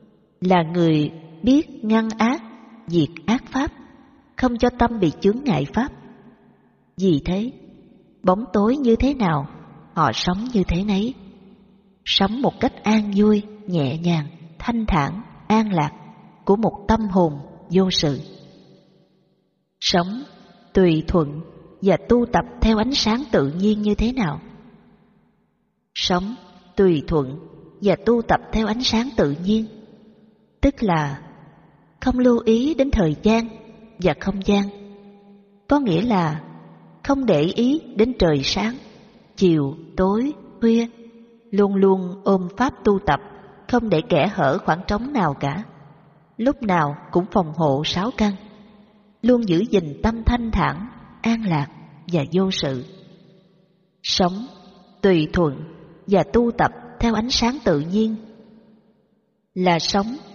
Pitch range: 175-225 Hz